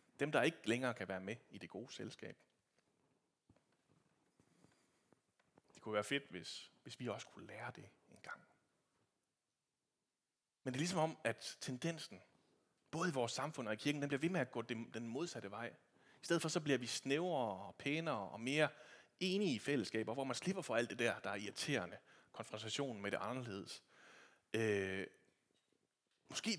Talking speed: 170 wpm